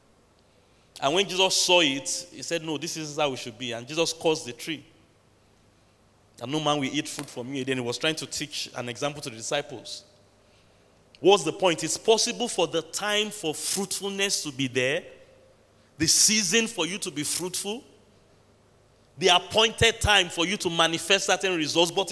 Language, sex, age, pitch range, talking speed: English, male, 30-49, 130-180 Hz, 185 wpm